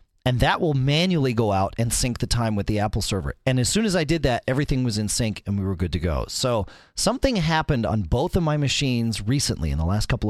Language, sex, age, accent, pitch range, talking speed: English, male, 40-59, American, 80-120 Hz, 255 wpm